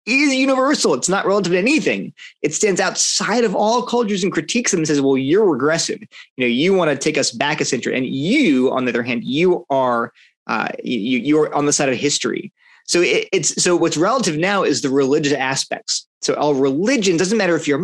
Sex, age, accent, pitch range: male, 30-49, American, 130-190 Hz